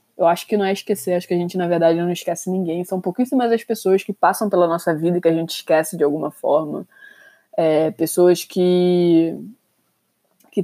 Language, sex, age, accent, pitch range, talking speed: Portuguese, female, 20-39, Brazilian, 170-195 Hz, 195 wpm